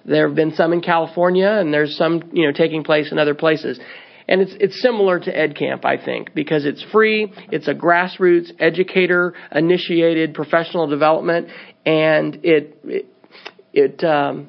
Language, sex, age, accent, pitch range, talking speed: English, male, 40-59, American, 155-190 Hz, 165 wpm